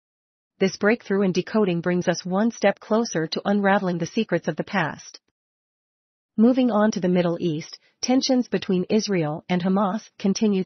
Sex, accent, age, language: female, American, 40-59, English